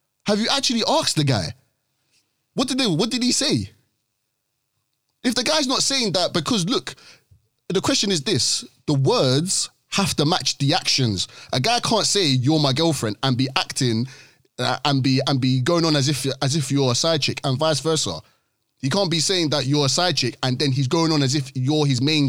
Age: 20-39